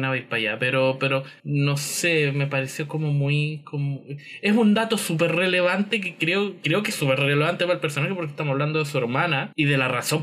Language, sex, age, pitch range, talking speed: English, male, 20-39, 140-190 Hz, 225 wpm